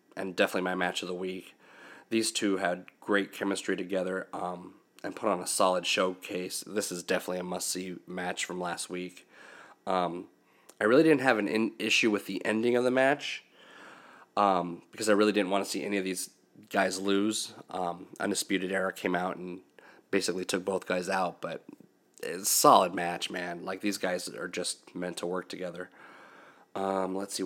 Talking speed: 185 wpm